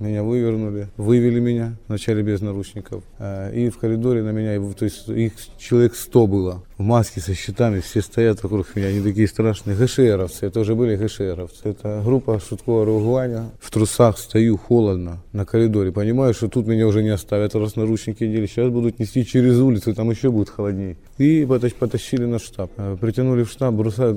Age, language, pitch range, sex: 20-39, Ukrainian, 105-120 Hz, male